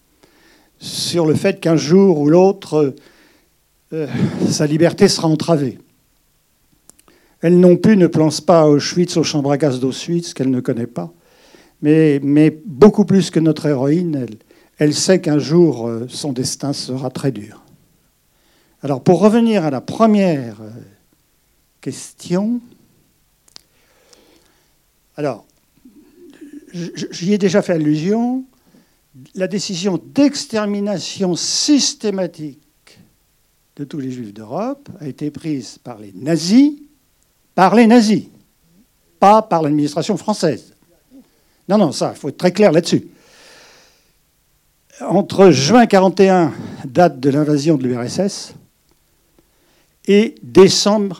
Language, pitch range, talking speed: French, 145-205 Hz, 120 wpm